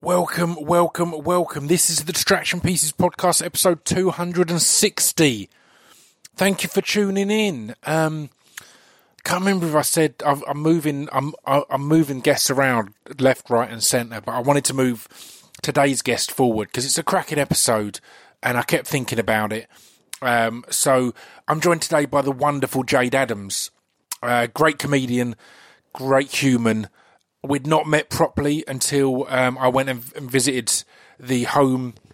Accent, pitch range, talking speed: British, 125-155 Hz, 155 wpm